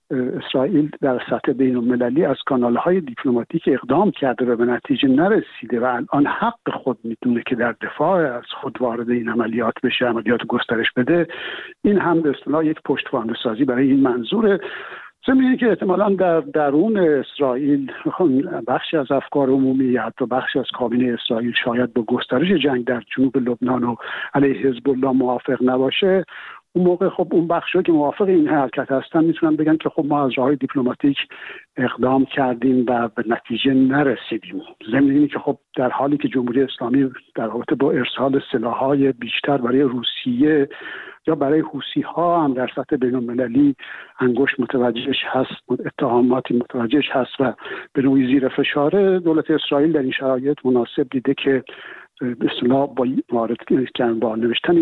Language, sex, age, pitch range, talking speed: Persian, male, 60-79, 125-160 Hz, 150 wpm